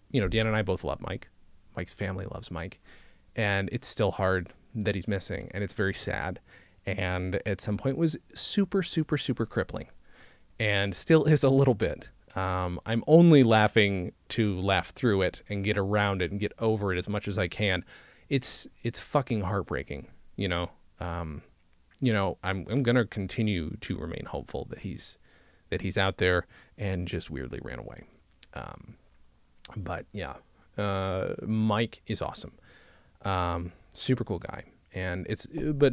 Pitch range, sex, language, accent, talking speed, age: 95-115 Hz, male, English, American, 170 wpm, 30-49